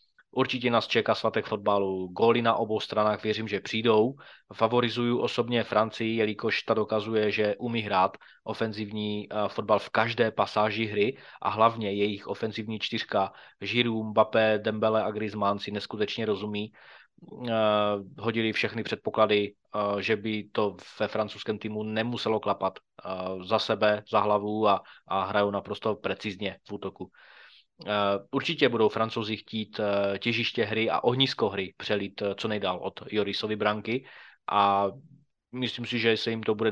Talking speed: 140 wpm